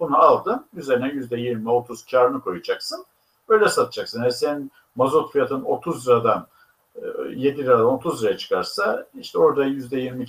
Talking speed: 130 wpm